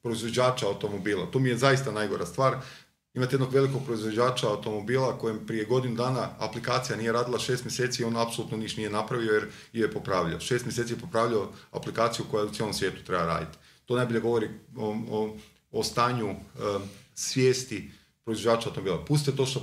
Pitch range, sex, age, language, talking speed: 110-135 Hz, male, 40-59, Croatian, 175 wpm